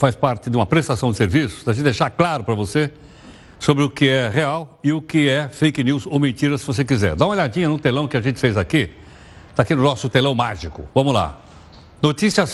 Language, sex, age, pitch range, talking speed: Portuguese, male, 60-79, 135-180 Hz, 230 wpm